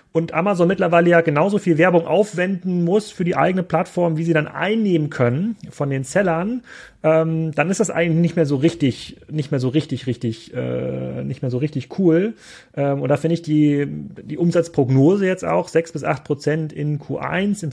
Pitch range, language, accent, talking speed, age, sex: 130-170 Hz, German, German, 195 wpm, 30-49, male